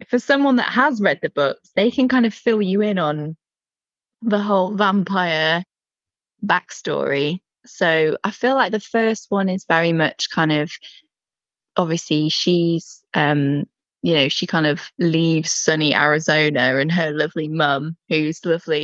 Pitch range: 155-210 Hz